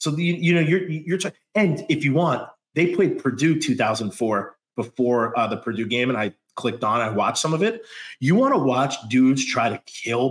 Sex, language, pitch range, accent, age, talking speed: male, English, 125-170 Hz, American, 30-49, 215 wpm